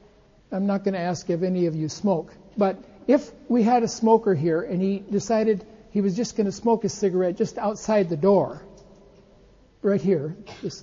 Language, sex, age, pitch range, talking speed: English, male, 60-79, 180-250 Hz, 195 wpm